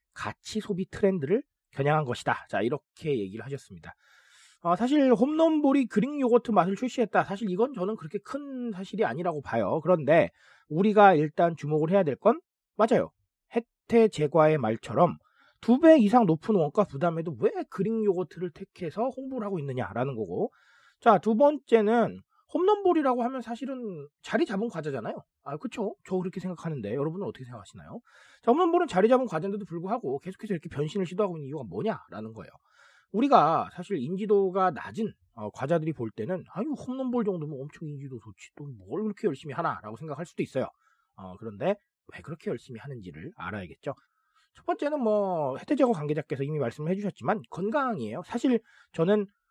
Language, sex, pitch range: Korean, male, 155-235 Hz